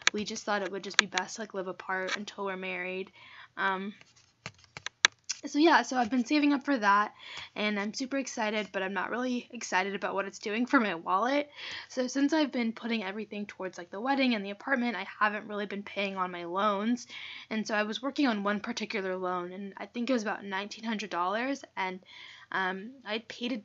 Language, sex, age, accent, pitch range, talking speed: English, female, 10-29, American, 195-250 Hz, 210 wpm